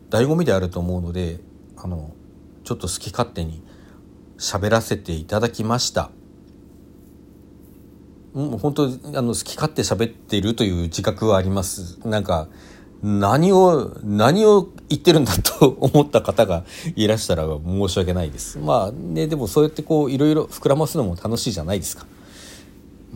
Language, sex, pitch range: Japanese, male, 90-135 Hz